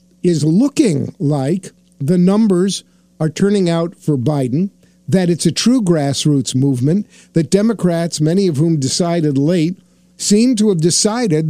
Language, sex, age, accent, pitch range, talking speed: English, male, 50-69, American, 155-205 Hz, 140 wpm